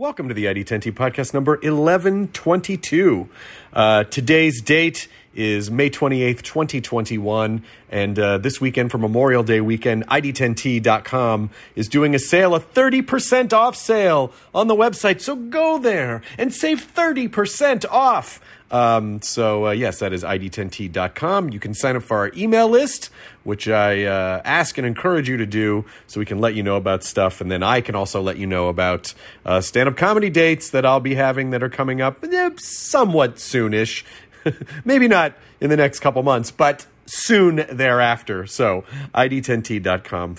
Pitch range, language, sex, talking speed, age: 110-160 Hz, English, male, 160 wpm, 40-59